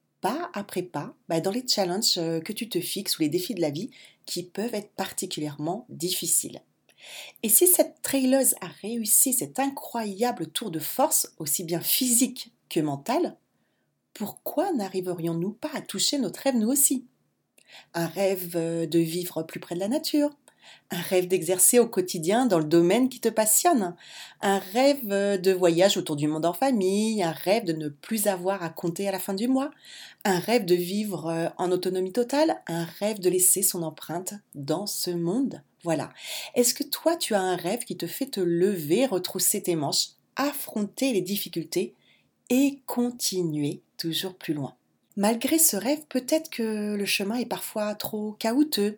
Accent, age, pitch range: French, 40-59, 175-245 Hz